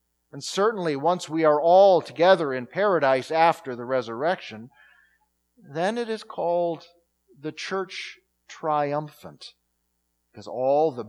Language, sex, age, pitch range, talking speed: English, male, 40-59, 110-180 Hz, 120 wpm